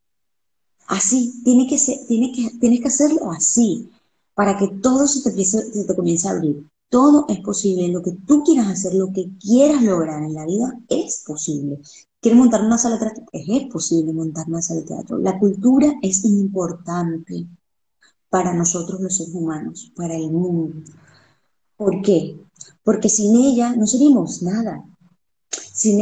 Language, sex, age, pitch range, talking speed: Spanish, female, 20-39, 180-235 Hz, 165 wpm